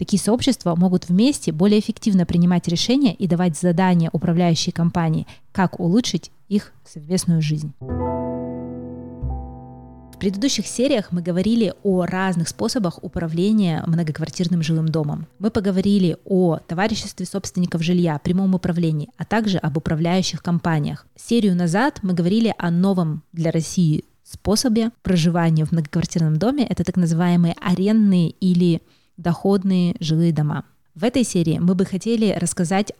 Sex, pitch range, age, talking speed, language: female, 165-190 Hz, 20-39, 130 wpm, Russian